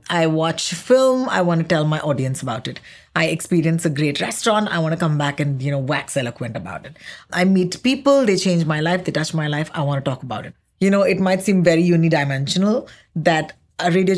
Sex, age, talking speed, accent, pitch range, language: female, 30-49, 230 wpm, Indian, 155-195 Hz, English